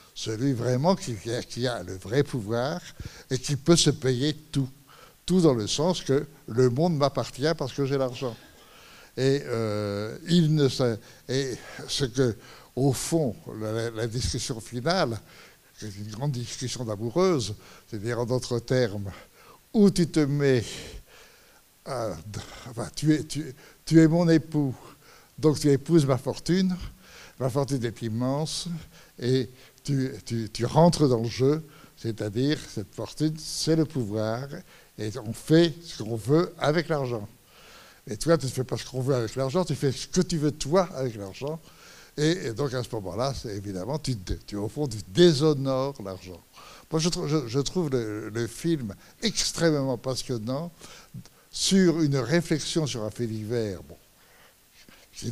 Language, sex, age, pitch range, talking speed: French, male, 60-79, 115-155 Hz, 160 wpm